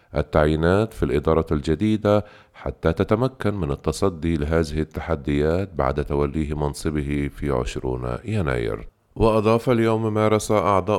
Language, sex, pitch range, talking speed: Arabic, male, 75-105 Hz, 110 wpm